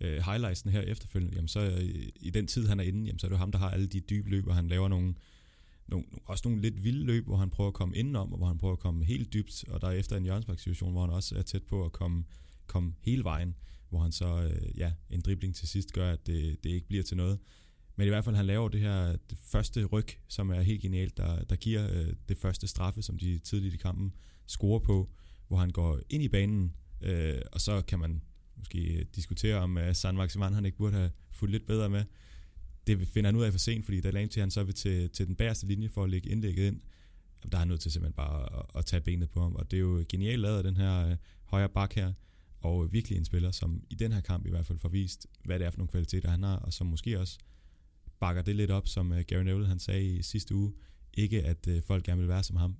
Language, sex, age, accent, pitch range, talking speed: Danish, male, 30-49, native, 85-100 Hz, 265 wpm